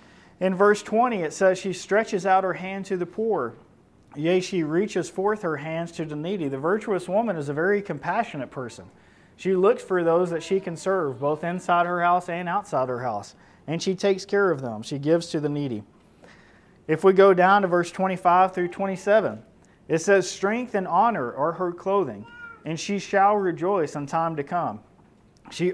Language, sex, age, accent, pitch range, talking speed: English, male, 40-59, American, 150-190 Hz, 195 wpm